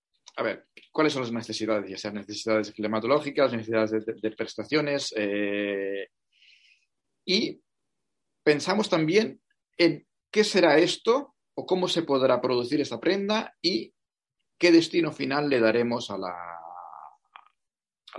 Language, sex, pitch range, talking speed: Spanish, male, 120-170 Hz, 130 wpm